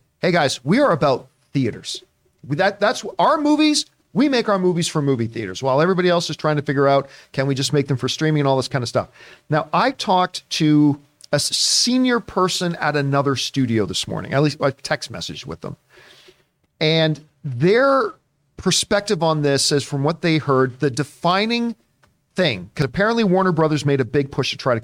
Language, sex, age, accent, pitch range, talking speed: English, male, 40-59, American, 130-170 Hz, 195 wpm